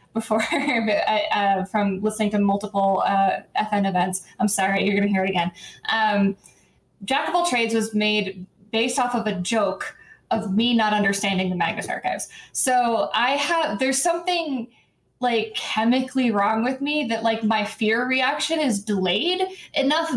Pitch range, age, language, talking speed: 205-255 Hz, 20-39, English, 160 wpm